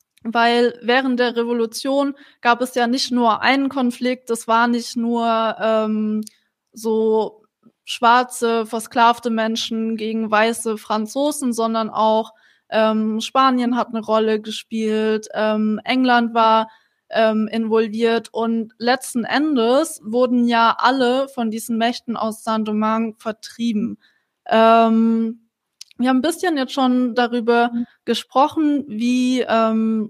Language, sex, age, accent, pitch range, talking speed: German, female, 20-39, German, 225-250 Hz, 120 wpm